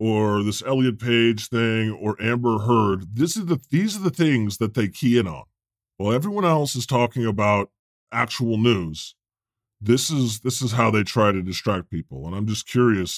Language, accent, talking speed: English, American, 190 wpm